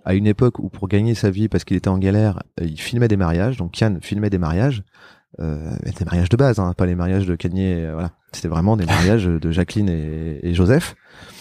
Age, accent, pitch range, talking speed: 30-49, French, 90-110 Hz, 235 wpm